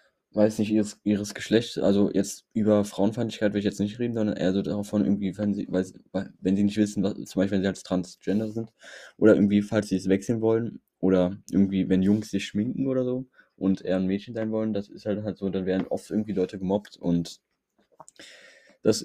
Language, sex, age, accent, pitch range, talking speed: German, male, 20-39, German, 95-105 Hz, 215 wpm